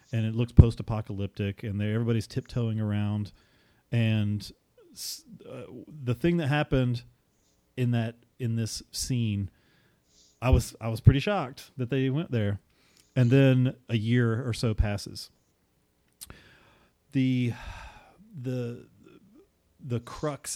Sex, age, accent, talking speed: male, 40-59, American, 115 wpm